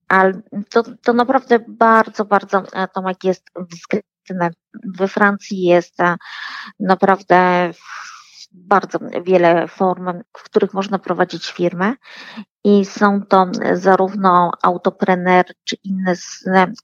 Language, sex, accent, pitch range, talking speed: Polish, female, native, 175-200 Hz, 100 wpm